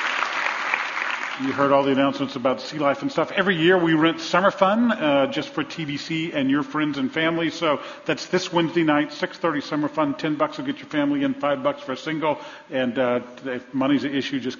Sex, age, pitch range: male, 50-69, 125-160 Hz